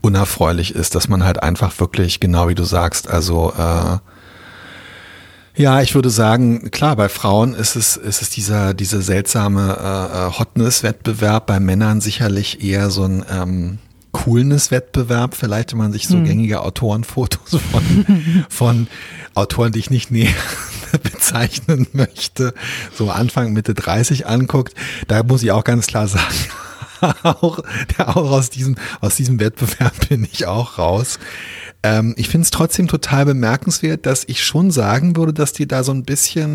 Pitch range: 100-135 Hz